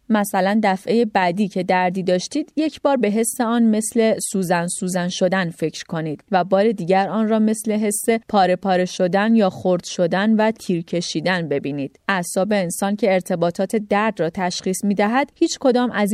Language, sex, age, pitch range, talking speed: Persian, female, 30-49, 180-225 Hz, 170 wpm